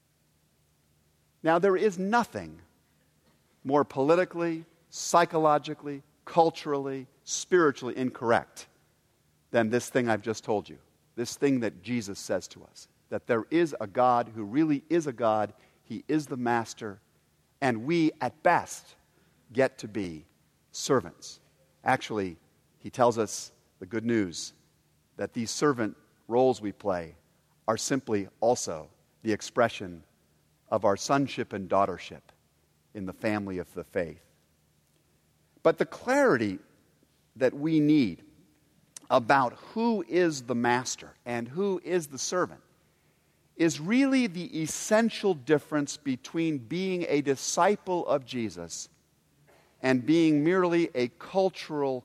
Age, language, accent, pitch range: 50-69, English, American, 100-155 Hz